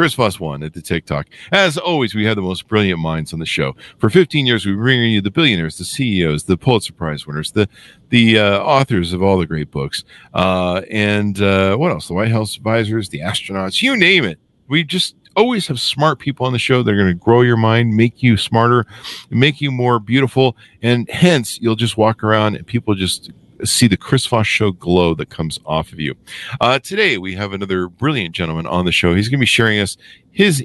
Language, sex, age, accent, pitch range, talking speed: English, male, 50-69, American, 95-125 Hz, 225 wpm